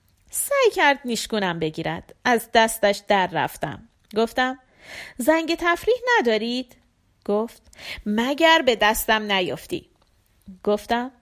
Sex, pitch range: female, 205-280 Hz